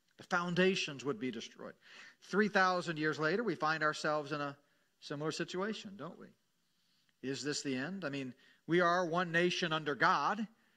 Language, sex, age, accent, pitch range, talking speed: English, male, 40-59, American, 150-195 Hz, 160 wpm